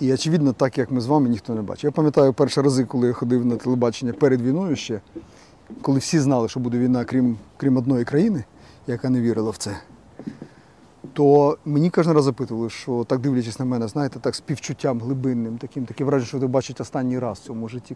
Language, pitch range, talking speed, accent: Ukrainian, 120-145 Hz, 200 wpm, native